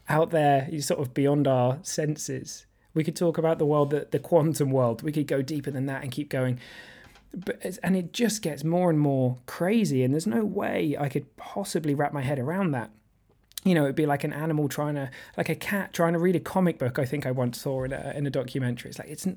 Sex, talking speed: male, 240 wpm